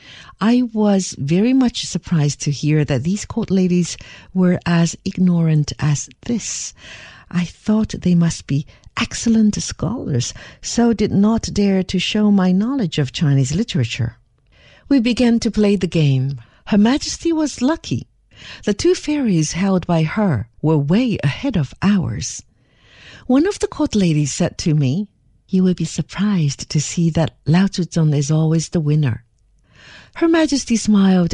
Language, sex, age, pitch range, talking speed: English, female, 50-69, 140-205 Hz, 150 wpm